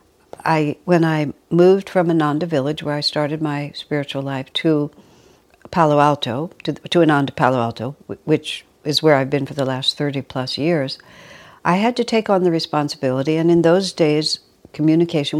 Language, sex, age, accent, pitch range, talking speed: English, female, 60-79, American, 140-165 Hz, 170 wpm